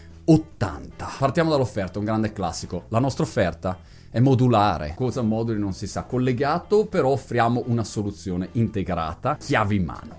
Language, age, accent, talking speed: Italian, 30-49, native, 145 wpm